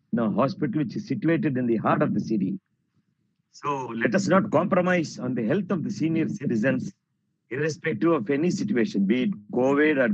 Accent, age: Indian, 50-69